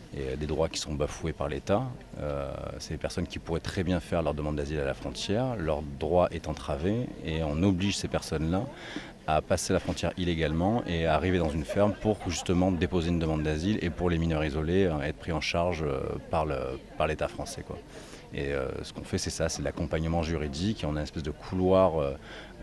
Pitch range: 75-95 Hz